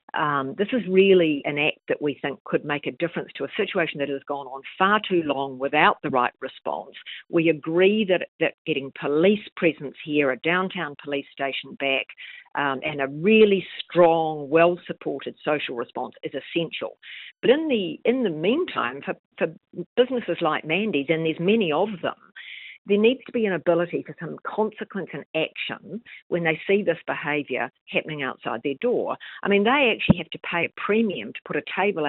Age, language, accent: 50-69, English, Australian